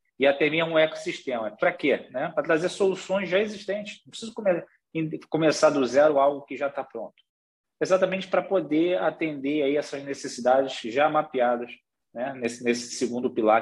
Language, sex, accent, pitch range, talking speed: Portuguese, male, Brazilian, 140-190 Hz, 150 wpm